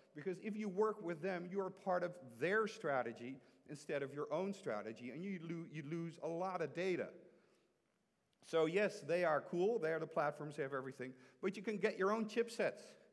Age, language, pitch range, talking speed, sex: 50-69, English, 160-205 Hz, 200 wpm, male